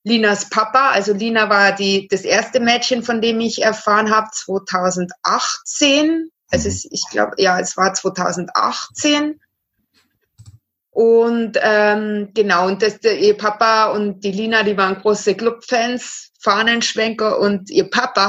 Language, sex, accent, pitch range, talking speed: German, female, German, 190-220 Hz, 135 wpm